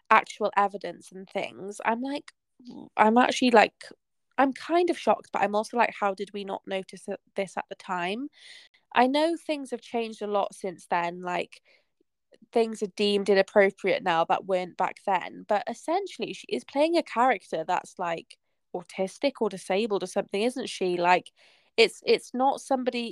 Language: English